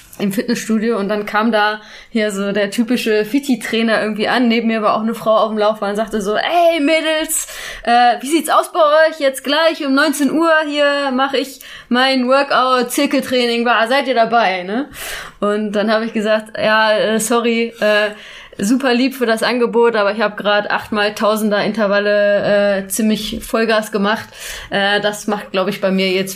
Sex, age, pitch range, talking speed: female, 20-39, 200-245 Hz, 185 wpm